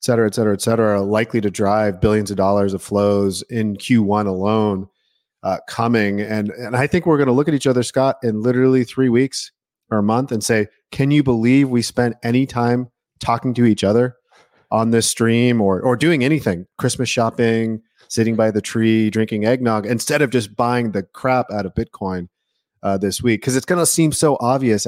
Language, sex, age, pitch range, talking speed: English, male, 30-49, 105-125 Hz, 205 wpm